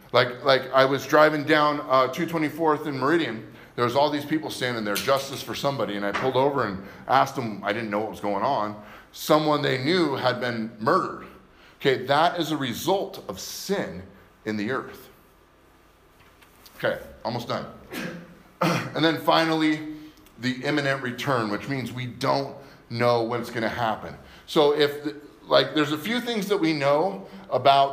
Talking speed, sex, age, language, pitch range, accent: 170 wpm, male, 30-49, English, 115-155 Hz, American